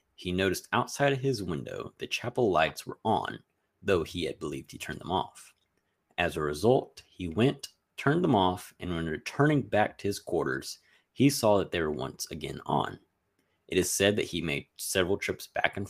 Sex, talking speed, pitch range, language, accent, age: male, 195 wpm, 85-115 Hz, English, American, 30-49